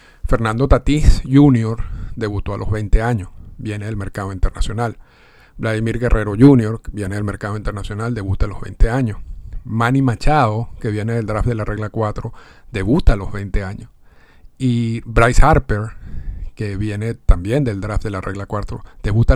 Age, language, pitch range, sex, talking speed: 50-69, Spanish, 105-125 Hz, male, 160 wpm